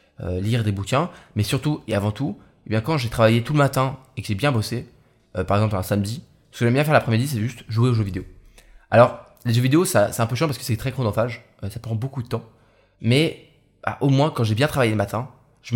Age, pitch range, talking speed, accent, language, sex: 20-39, 105-130 Hz, 265 wpm, French, French, male